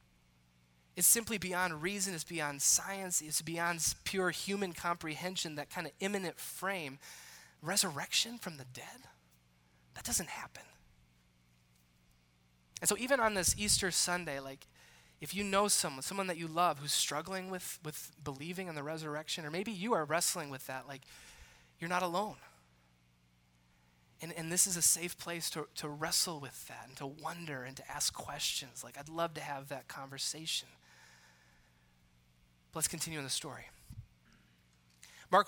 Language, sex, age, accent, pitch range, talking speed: English, male, 20-39, American, 130-185 Hz, 155 wpm